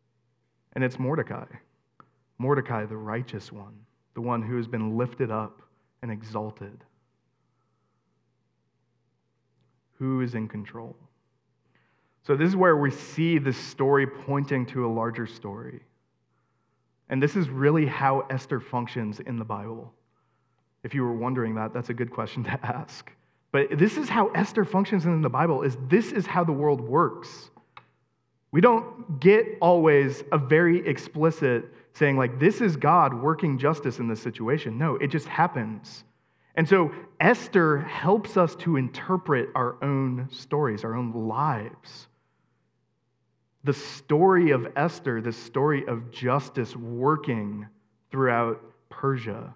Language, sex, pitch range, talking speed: English, male, 115-150 Hz, 140 wpm